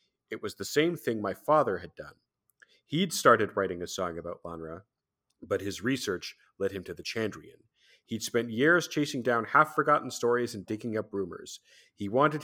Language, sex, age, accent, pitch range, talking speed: English, male, 40-59, American, 100-135 Hz, 180 wpm